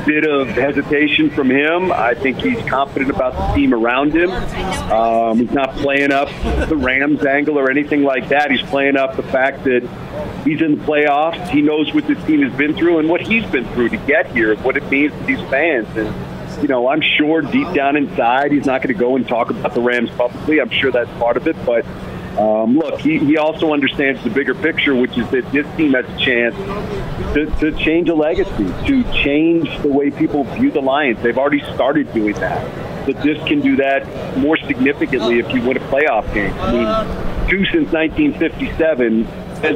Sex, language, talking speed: male, English, 205 wpm